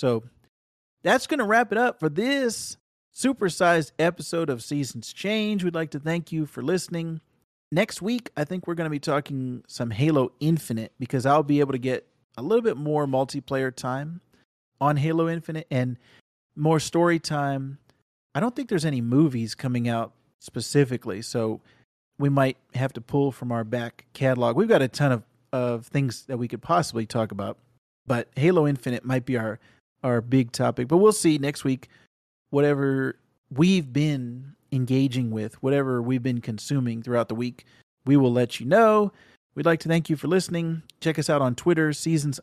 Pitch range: 125-165 Hz